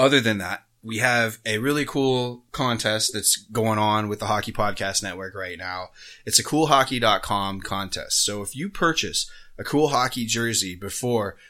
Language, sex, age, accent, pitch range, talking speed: English, male, 20-39, American, 100-125 Hz, 165 wpm